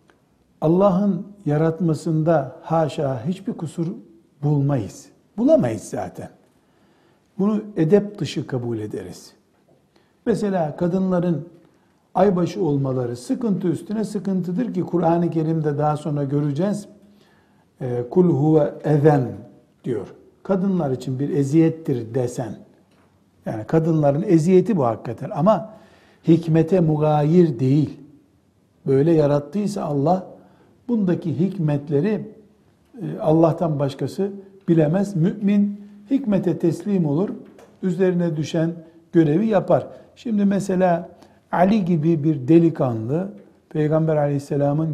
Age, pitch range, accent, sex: 60-79, 145-190 Hz, native, male